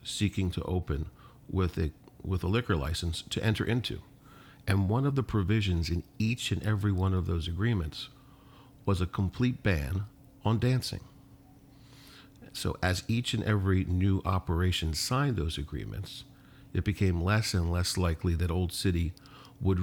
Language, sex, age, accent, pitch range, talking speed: English, male, 50-69, American, 90-120 Hz, 155 wpm